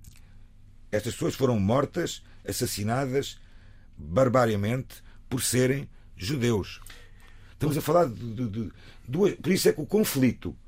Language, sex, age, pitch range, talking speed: Portuguese, male, 50-69, 100-130 Hz, 110 wpm